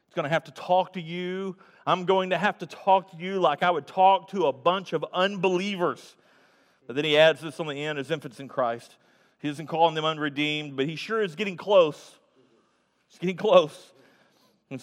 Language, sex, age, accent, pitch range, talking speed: English, male, 40-59, American, 140-195 Hz, 205 wpm